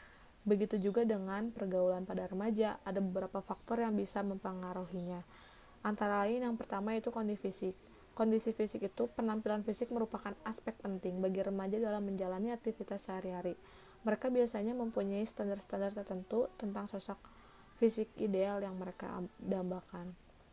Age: 20-39